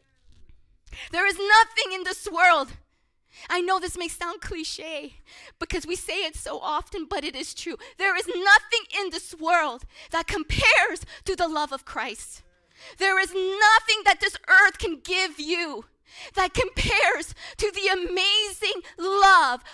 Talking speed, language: 150 wpm, English